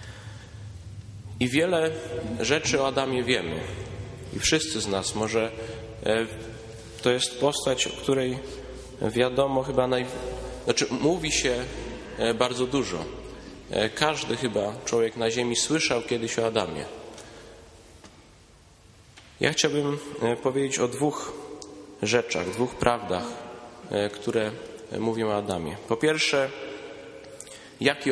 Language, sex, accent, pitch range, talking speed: Polish, male, native, 110-130 Hz, 100 wpm